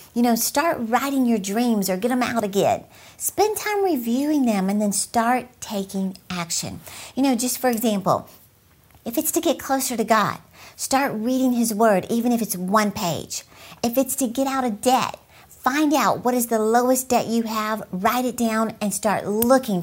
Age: 50-69